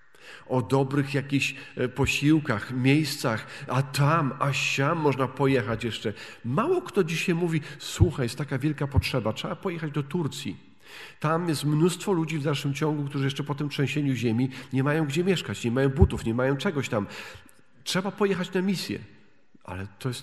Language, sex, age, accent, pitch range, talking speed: Polish, male, 40-59, native, 135-175 Hz, 165 wpm